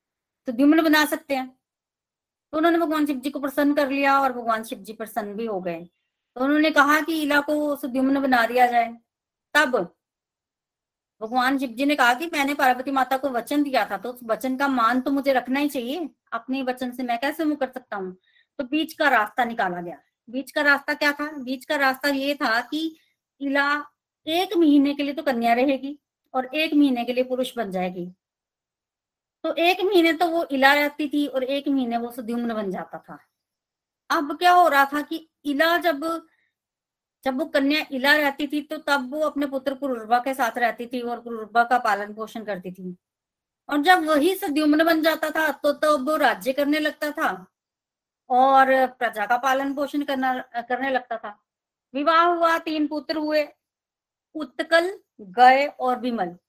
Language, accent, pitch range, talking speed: Hindi, native, 245-300 Hz, 190 wpm